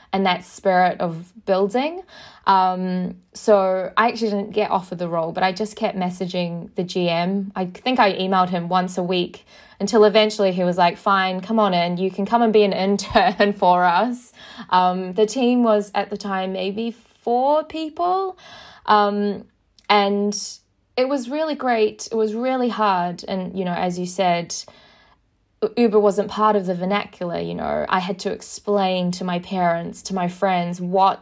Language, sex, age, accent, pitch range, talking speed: English, female, 20-39, Australian, 180-210 Hz, 175 wpm